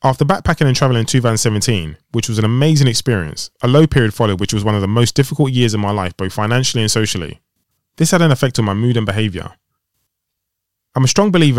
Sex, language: male, English